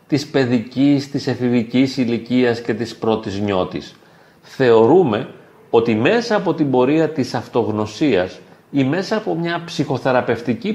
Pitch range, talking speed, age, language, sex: 125-165 Hz, 125 wpm, 40-59, Greek, male